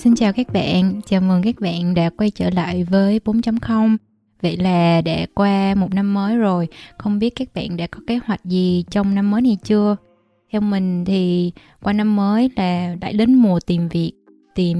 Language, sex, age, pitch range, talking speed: Vietnamese, female, 20-39, 180-220 Hz, 200 wpm